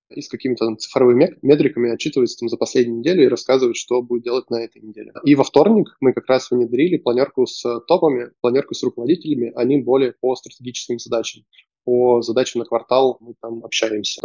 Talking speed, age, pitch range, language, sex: 180 wpm, 20-39, 115-135 Hz, Russian, male